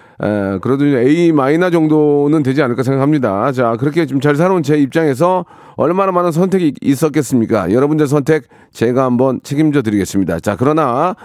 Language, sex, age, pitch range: Korean, male, 40-59, 130-190 Hz